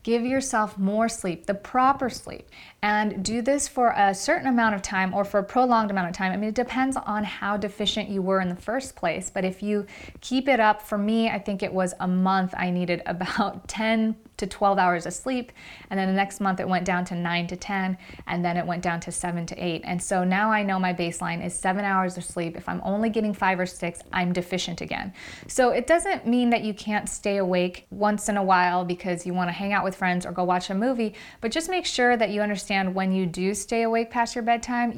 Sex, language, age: female, English, 30-49